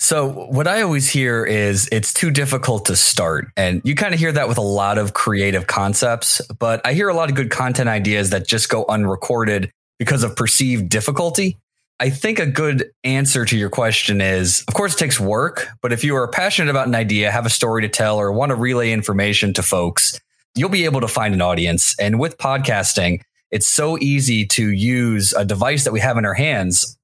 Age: 20-39